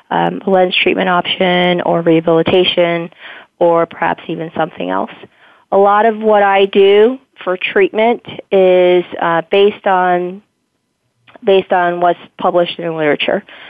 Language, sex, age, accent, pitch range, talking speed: English, female, 30-49, American, 170-185 Hz, 130 wpm